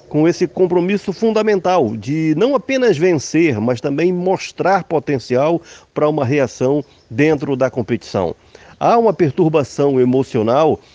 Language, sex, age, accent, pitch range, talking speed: Portuguese, male, 50-69, Brazilian, 130-180 Hz, 120 wpm